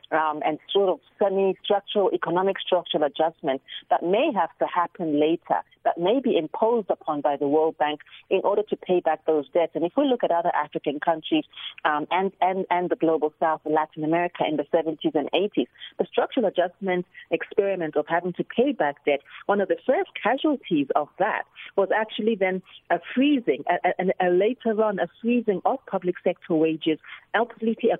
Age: 40-59